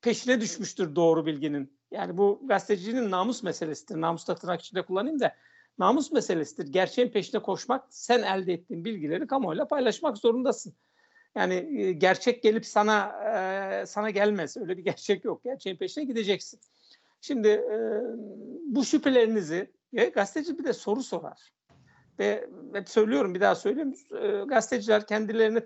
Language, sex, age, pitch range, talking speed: Turkish, male, 60-79, 185-235 Hz, 125 wpm